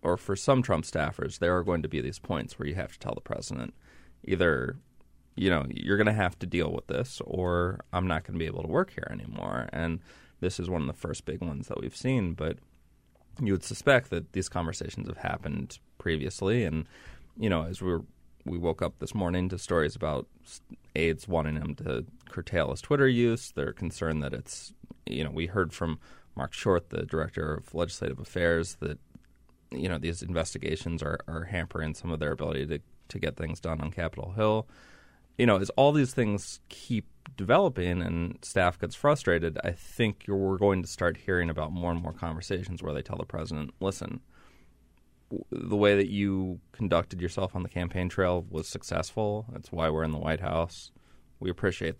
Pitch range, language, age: 80-95 Hz, English, 20-39